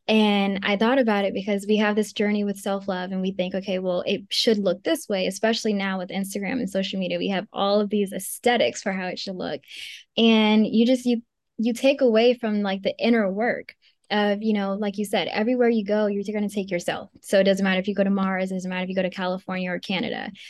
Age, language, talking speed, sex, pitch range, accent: 10-29, English, 250 wpm, female, 195-235 Hz, American